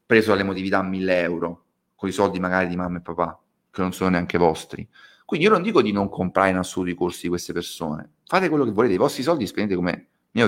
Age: 30-49